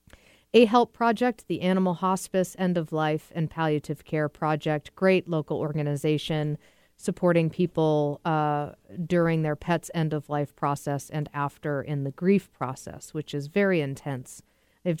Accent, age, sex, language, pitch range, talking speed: American, 40-59, female, English, 145-175 Hz, 130 wpm